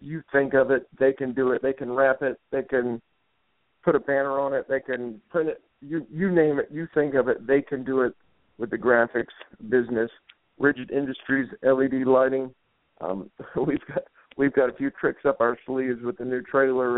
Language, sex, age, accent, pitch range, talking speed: English, male, 50-69, American, 120-140 Hz, 205 wpm